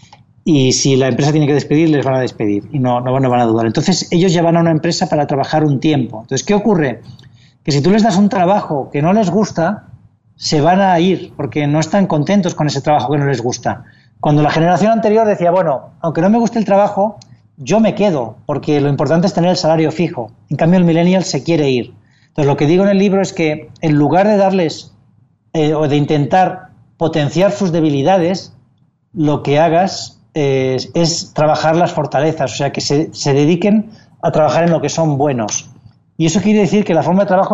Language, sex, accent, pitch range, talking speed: Spanish, male, Spanish, 140-185 Hz, 220 wpm